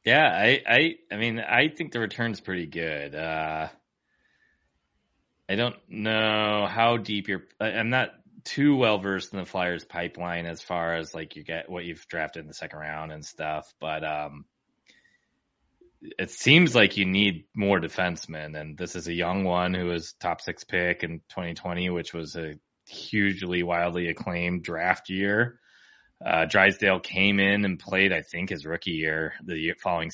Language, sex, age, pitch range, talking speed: English, male, 20-39, 85-100 Hz, 170 wpm